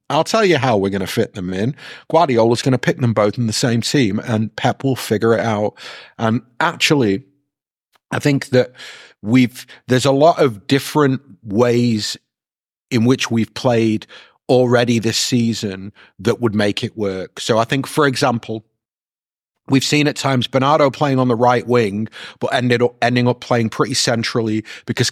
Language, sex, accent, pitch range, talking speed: English, male, British, 110-135 Hz, 175 wpm